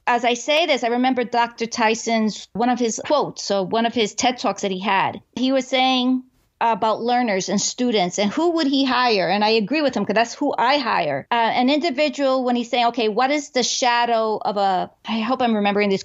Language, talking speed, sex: English, 230 wpm, female